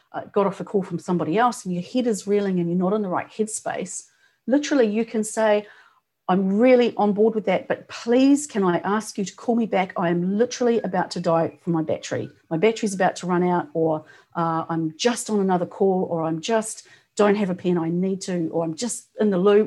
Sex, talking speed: female, 235 wpm